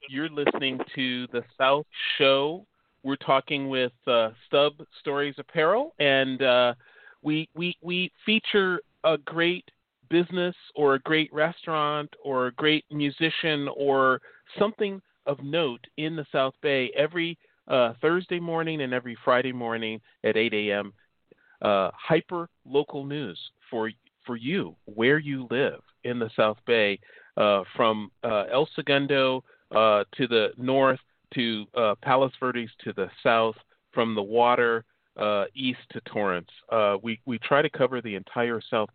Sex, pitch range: male, 115-155 Hz